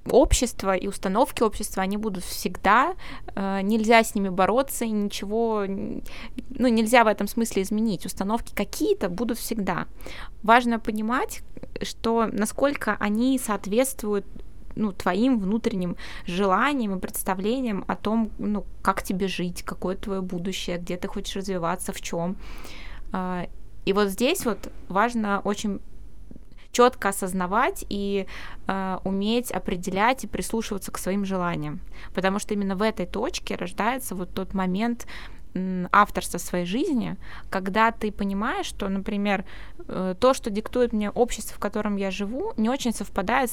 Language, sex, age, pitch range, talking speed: Russian, female, 20-39, 190-230 Hz, 135 wpm